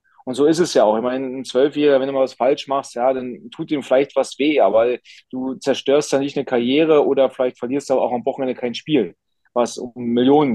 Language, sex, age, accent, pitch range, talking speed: German, male, 30-49, German, 130-155 Hz, 240 wpm